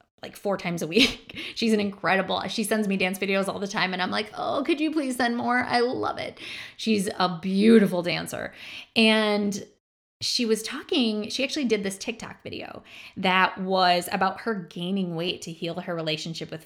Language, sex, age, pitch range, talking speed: English, female, 20-39, 180-220 Hz, 190 wpm